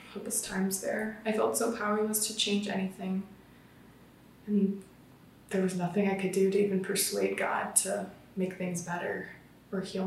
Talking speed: 160 wpm